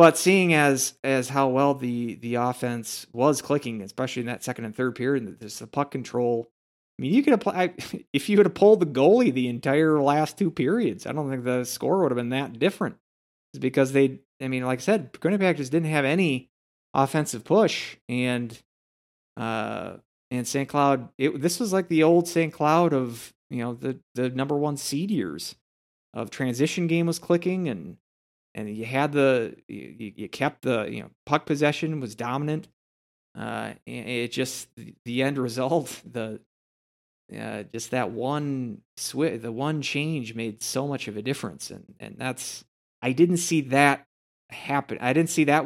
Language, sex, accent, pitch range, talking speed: English, male, American, 120-145 Hz, 185 wpm